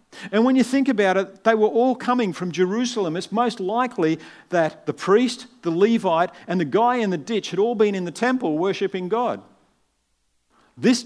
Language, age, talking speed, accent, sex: English, 50-69, 190 wpm, Australian, male